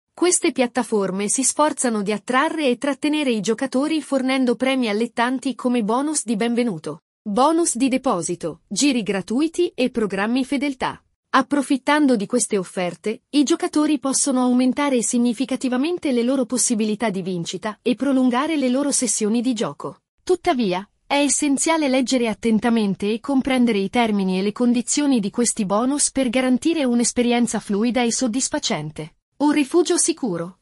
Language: Italian